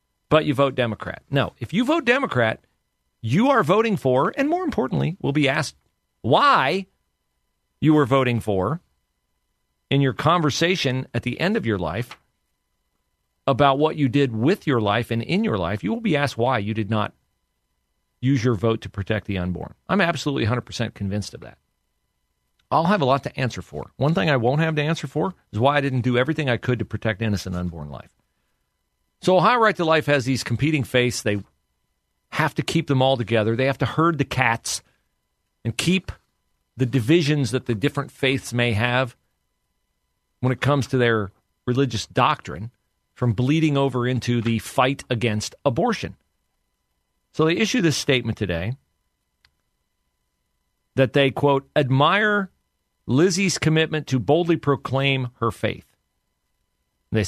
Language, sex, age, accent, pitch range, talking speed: English, male, 40-59, American, 100-145 Hz, 165 wpm